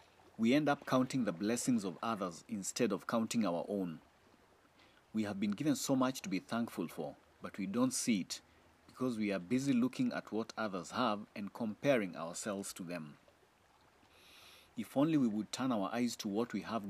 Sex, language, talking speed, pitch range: male, English, 190 wpm, 100-140 Hz